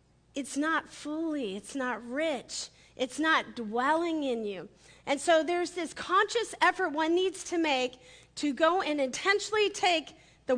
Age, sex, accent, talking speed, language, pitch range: 40-59, female, American, 155 wpm, English, 255-330 Hz